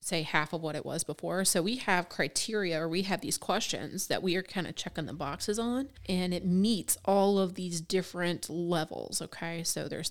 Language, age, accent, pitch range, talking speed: English, 30-49, American, 165-185 Hz, 215 wpm